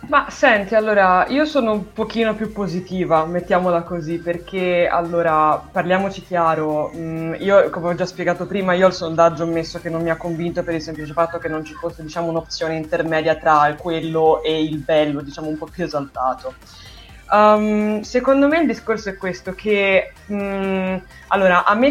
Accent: native